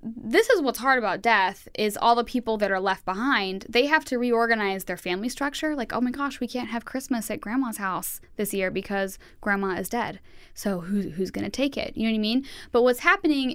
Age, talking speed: 10-29, 235 wpm